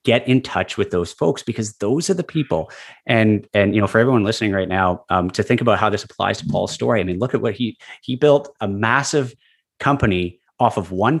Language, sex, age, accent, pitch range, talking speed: English, male, 30-49, American, 100-125 Hz, 235 wpm